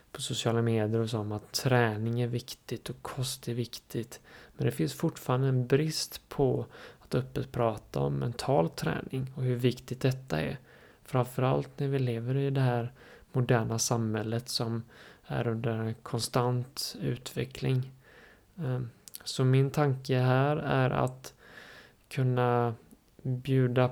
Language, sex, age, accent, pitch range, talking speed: Swedish, male, 20-39, native, 115-130 Hz, 135 wpm